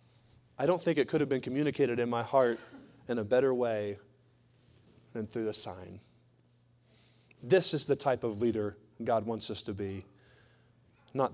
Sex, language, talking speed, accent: male, English, 165 wpm, American